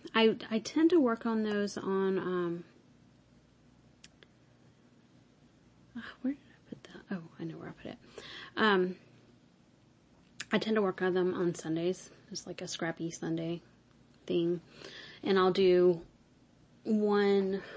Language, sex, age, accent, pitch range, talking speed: English, female, 30-49, American, 175-200 Hz, 135 wpm